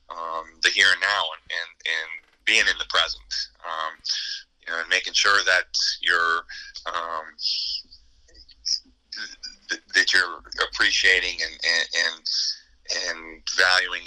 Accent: American